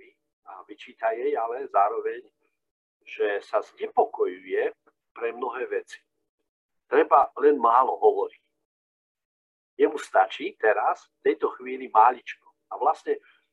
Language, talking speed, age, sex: Slovak, 100 wpm, 50-69, male